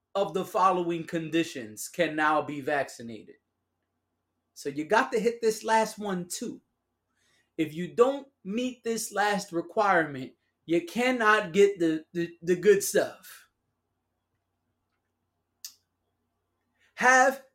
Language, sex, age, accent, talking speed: English, male, 20-39, American, 110 wpm